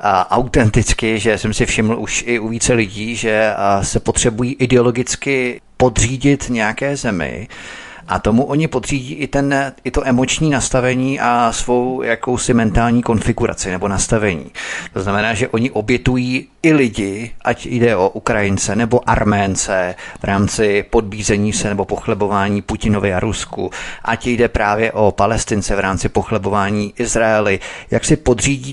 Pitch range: 105-125 Hz